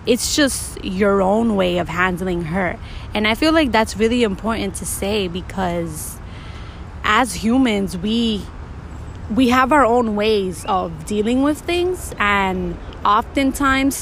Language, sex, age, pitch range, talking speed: English, female, 20-39, 190-235 Hz, 135 wpm